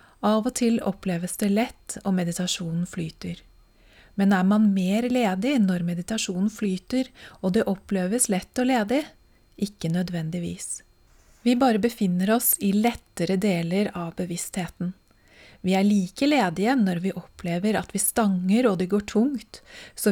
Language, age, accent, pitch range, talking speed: English, 30-49, Swedish, 180-220 Hz, 150 wpm